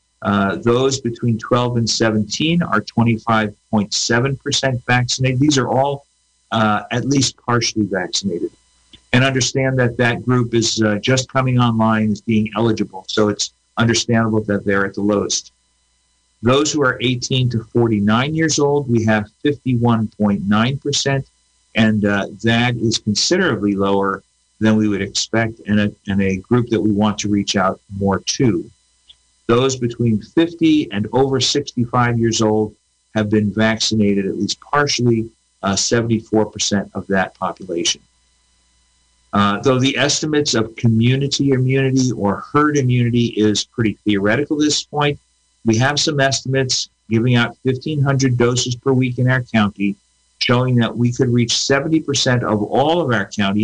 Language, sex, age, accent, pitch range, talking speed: English, male, 50-69, American, 100-130 Hz, 145 wpm